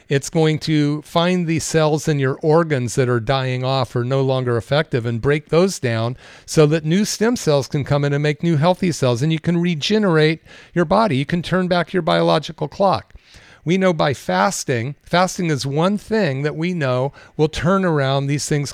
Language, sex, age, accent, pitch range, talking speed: English, male, 50-69, American, 135-165 Hz, 200 wpm